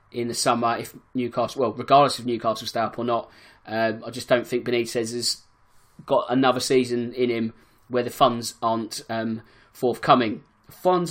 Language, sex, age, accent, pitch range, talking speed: English, male, 20-39, British, 125-165 Hz, 175 wpm